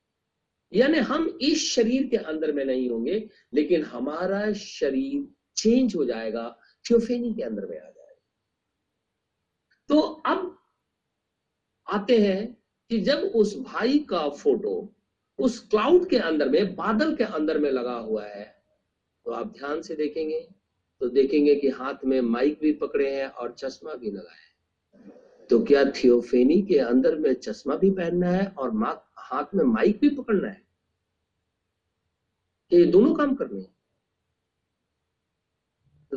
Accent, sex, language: native, male, Hindi